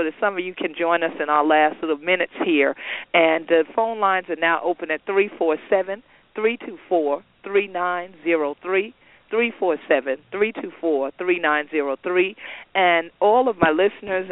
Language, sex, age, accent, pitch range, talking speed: English, female, 50-69, American, 160-195 Hz, 115 wpm